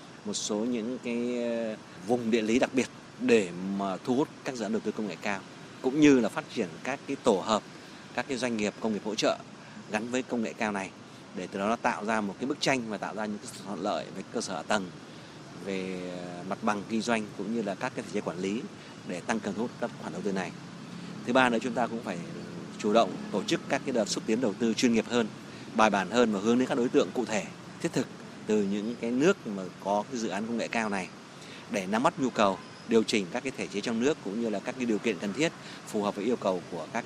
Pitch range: 105-125 Hz